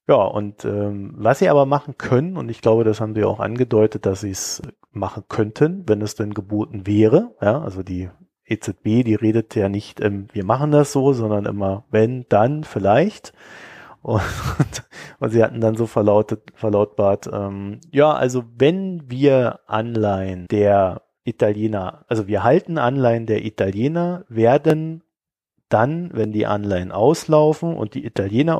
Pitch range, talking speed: 105-135 Hz, 155 wpm